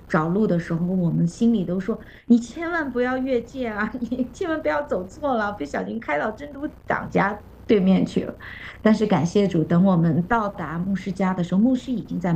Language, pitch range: Chinese, 175-230 Hz